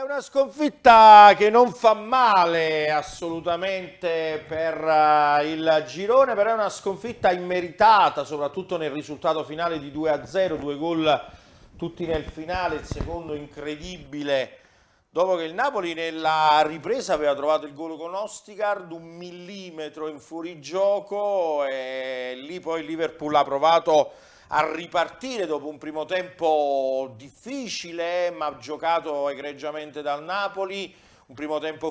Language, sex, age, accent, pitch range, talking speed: Italian, male, 50-69, native, 150-180 Hz, 125 wpm